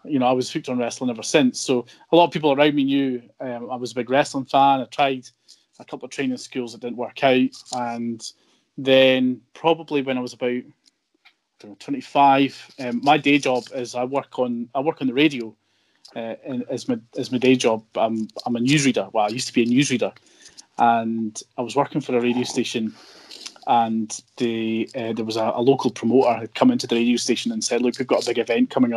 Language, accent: English, British